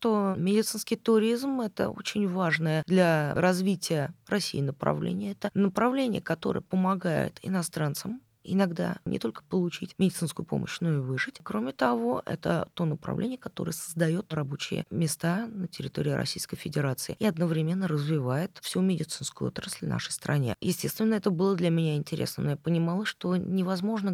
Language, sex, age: Russian, female, 20-39